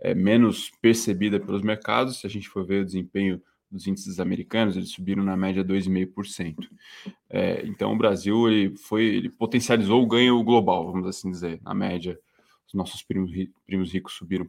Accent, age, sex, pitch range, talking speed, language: Brazilian, 20-39, male, 90-105 Hz, 170 wpm, Portuguese